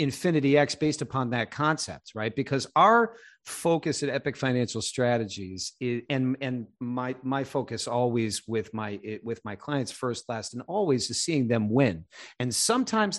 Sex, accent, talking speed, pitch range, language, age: male, American, 165 wpm, 125-170 Hz, English, 50-69